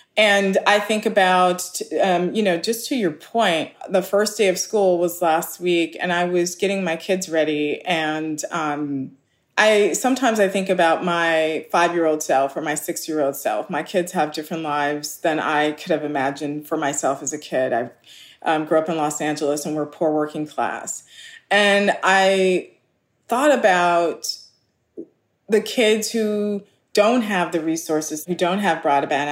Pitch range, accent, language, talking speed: 155-195 Hz, American, English, 170 wpm